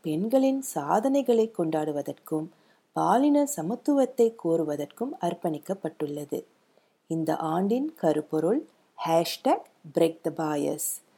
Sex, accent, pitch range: female, native, 160-245 Hz